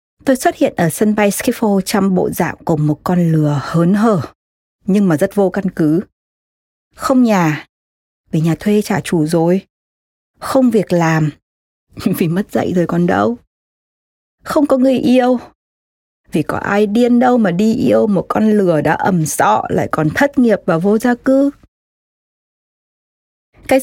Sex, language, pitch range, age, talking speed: female, Vietnamese, 165-235 Hz, 20-39, 165 wpm